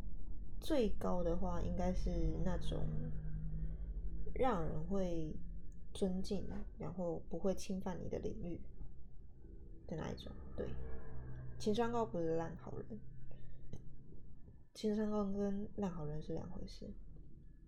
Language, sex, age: Chinese, female, 20-39